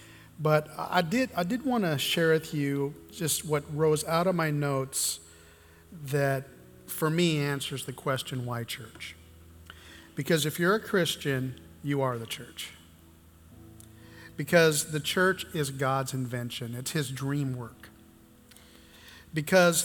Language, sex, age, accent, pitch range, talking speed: English, male, 50-69, American, 110-165 Hz, 135 wpm